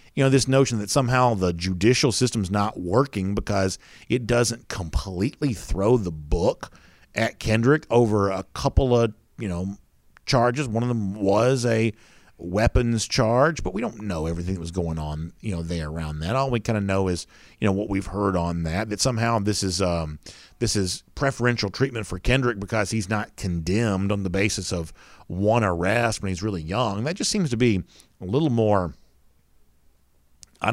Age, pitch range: 50-69, 95-120 Hz